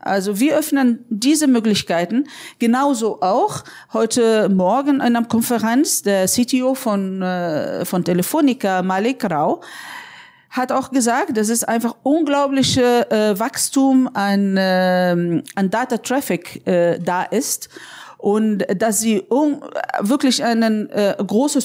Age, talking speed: 40-59, 105 wpm